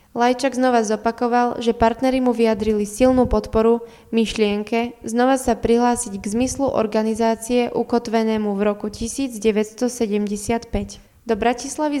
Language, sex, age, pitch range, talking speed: Slovak, female, 20-39, 220-250 Hz, 110 wpm